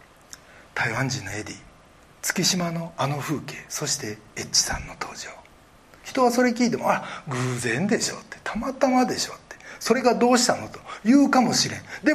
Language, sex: Japanese, male